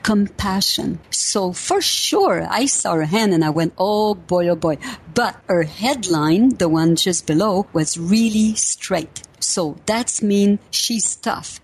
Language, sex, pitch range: English, female, 175-215 Hz